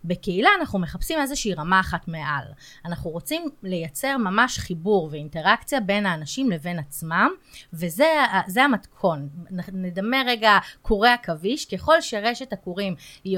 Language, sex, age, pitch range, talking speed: Hebrew, female, 30-49, 170-235 Hz, 120 wpm